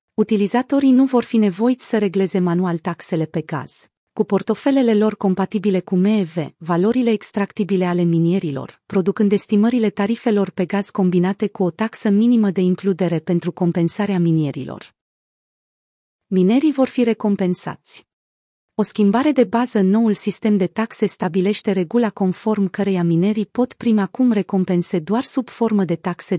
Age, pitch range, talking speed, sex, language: 30-49, 180-225 Hz, 145 wpm, female, Romanian